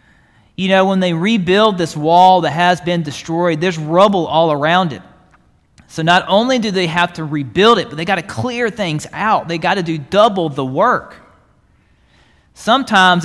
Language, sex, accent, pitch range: English, male, American, 135-190 Hz